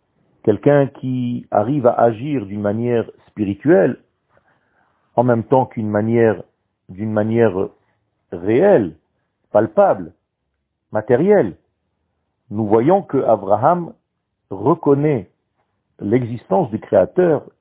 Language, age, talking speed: French, 50-69, 90 wpm